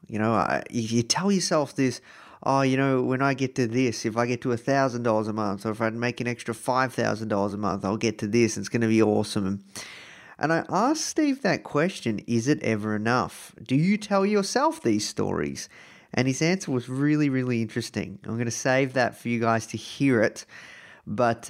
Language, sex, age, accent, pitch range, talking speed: English, male, 30-49, Australian, 110-135 Hz, 210 wpm